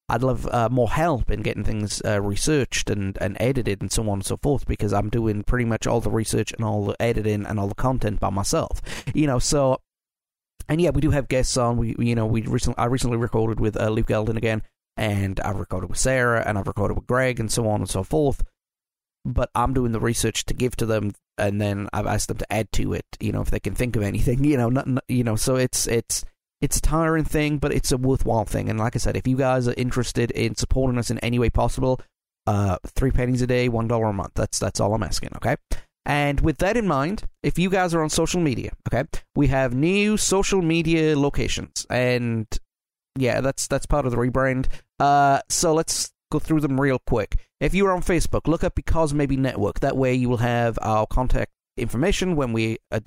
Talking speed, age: 235 wpm, 30-49